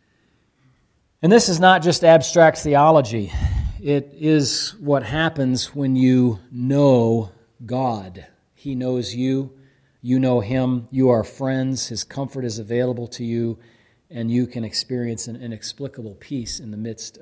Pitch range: 110-140 Hz